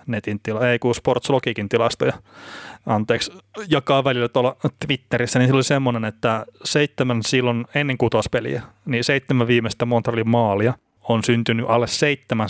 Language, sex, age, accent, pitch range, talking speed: Finnish, male, 20-39, native, 110-130 Hz, 140 wpm